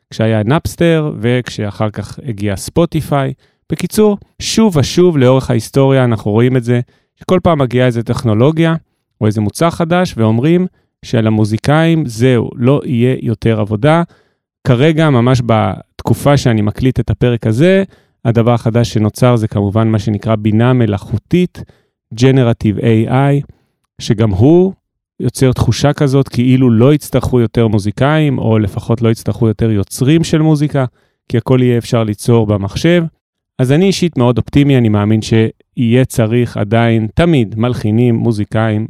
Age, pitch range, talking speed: 30-49, 115-145 Hz, 135 wpm